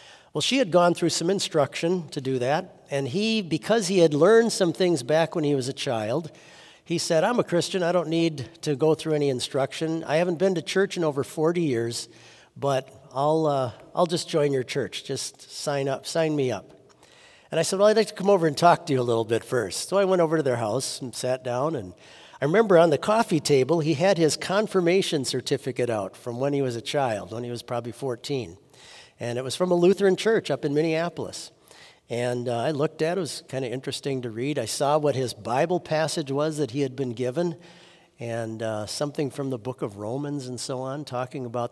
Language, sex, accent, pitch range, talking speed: English, male, American, 130-170 Hz, 230 wpm